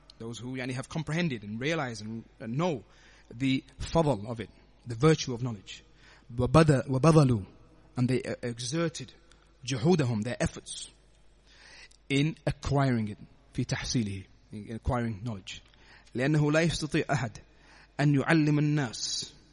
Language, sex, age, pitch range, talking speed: English, male, 30-49, 120-150 Hz, 105 wpm